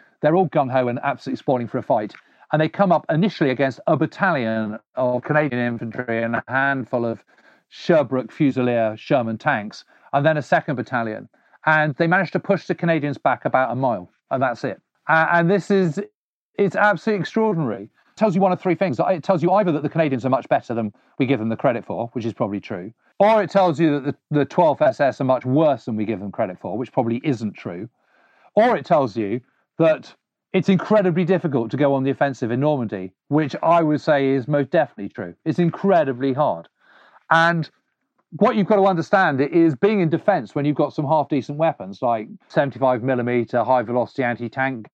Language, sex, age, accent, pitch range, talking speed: English, male, 40-59, British, 125-175 Hz, 200 wpm